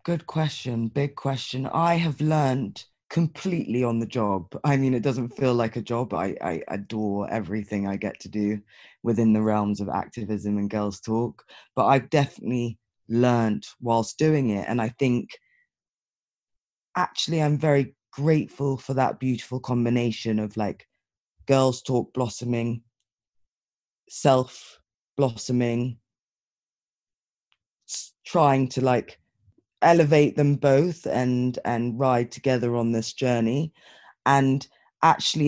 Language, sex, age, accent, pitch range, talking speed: English, female, 20-39, British, 115-140 Hz, 125 wpm